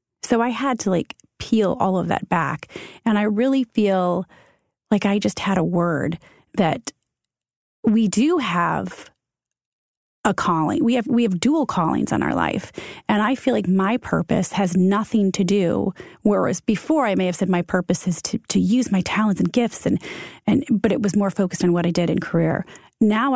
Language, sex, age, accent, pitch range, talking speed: English, female, 30-49, American, 175-225 Hz, 195 wpm